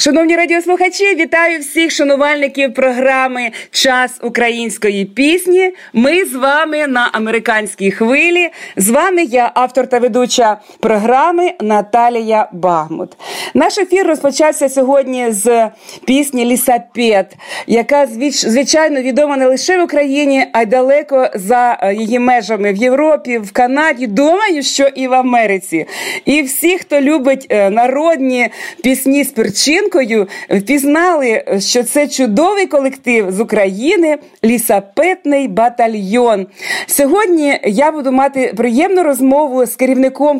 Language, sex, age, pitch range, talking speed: Russian, female, 40-59, 230-295 Hz, 115 wpm